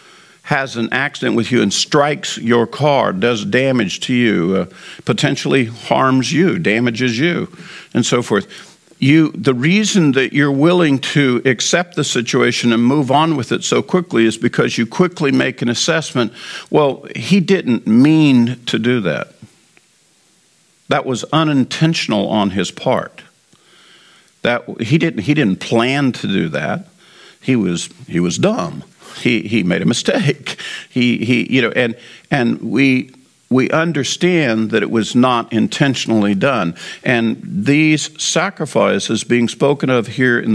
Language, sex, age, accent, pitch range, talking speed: English, male, 50-69, American, 120-160 Hz, 150 wpm